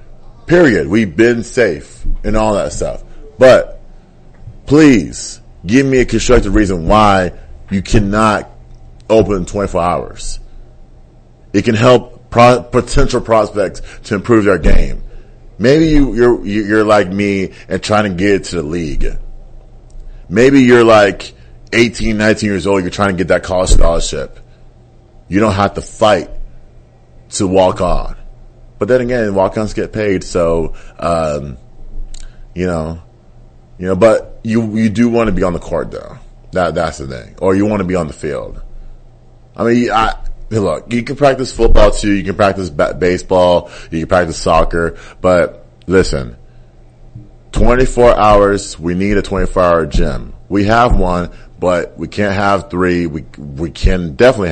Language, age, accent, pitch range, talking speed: English, 30-49, American, 80-110 Hz, 155 wpm